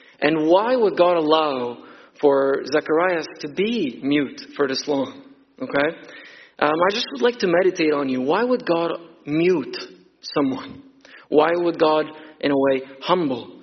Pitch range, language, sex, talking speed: 140-195 Hz, English, male, 155 wpm